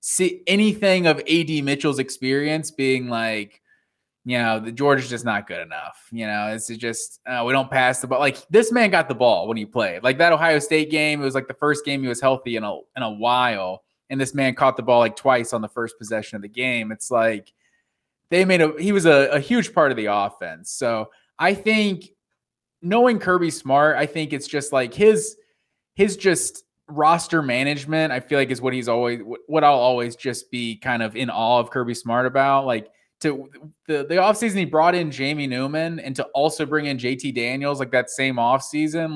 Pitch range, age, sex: 125-160 Hz, 20-39, male